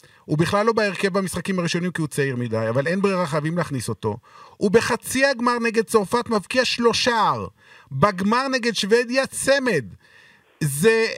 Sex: male